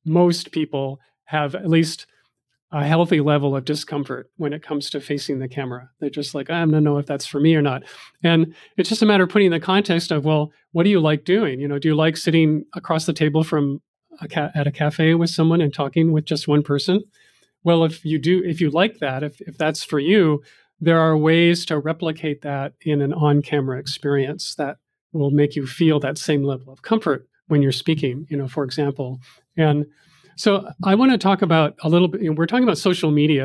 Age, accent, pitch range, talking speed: 40-59, American, 145-170 Hz, 220 wpm